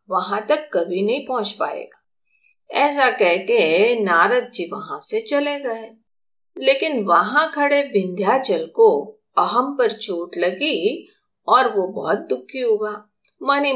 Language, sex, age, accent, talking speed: Hindi, female, 50-69, native, 130 wpm